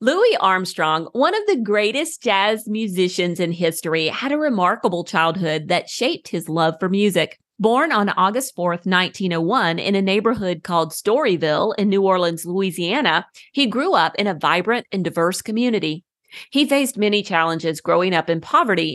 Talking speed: 160 wpm